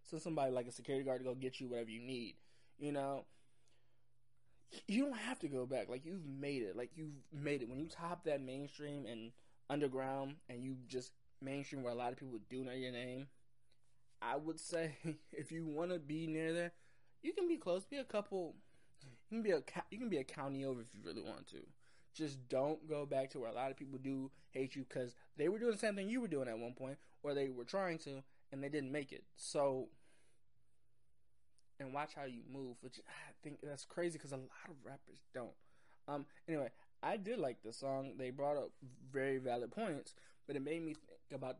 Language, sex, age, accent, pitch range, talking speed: English, male, 20-39, American, 125-150 Hz, 215 wpm